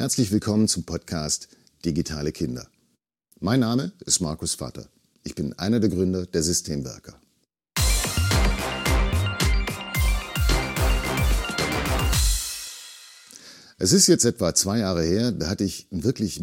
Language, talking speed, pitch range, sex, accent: German, 110 wpm, 80-115 Hz, male, German